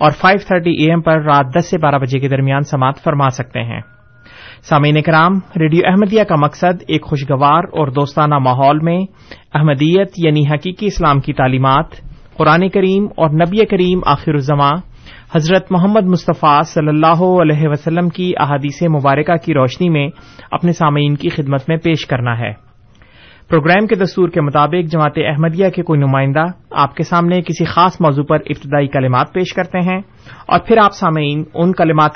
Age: 30-49